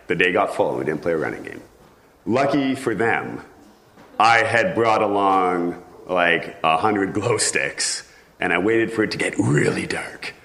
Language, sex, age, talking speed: English, male, 40-59, 180 wpm